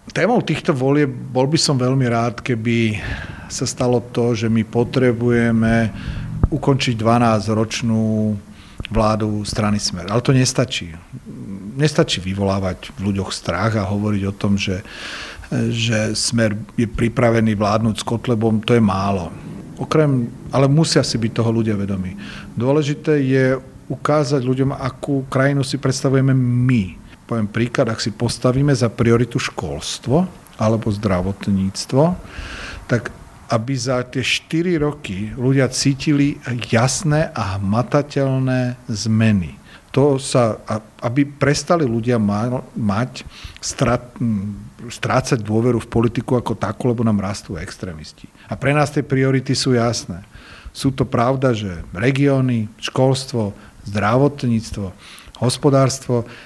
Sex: male